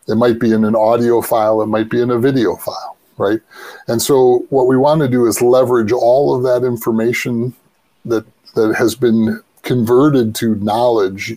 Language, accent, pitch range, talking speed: English, American, 110-135 Hz, 185 wpm